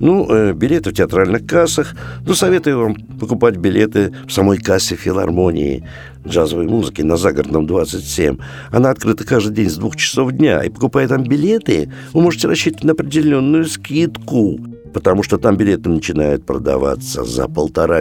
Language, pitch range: Russian, 95-155 Hz